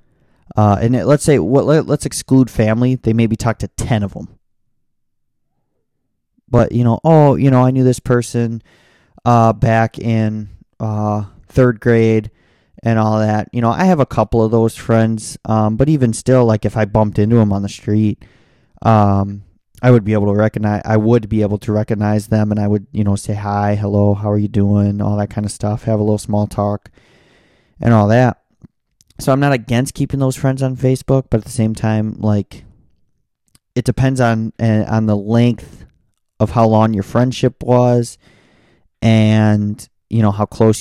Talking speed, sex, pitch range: 190 wpm, male, 105-125 Hz